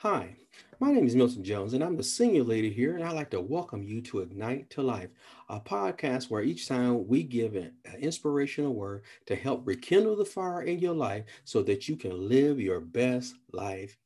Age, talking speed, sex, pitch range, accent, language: 40-59, 205 wpm, male, 115-155 Hz, American, English